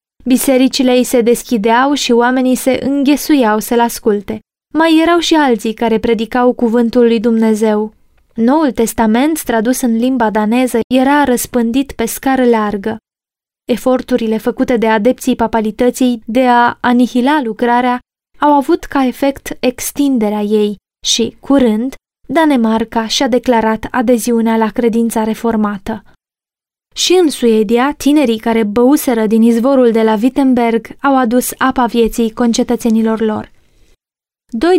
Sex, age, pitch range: female, 20-39, 225-265 Hz